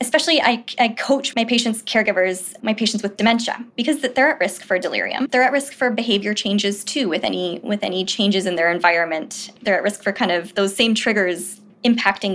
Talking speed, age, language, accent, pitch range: 200 wpm, 20-39, English, American, 205-255 Hz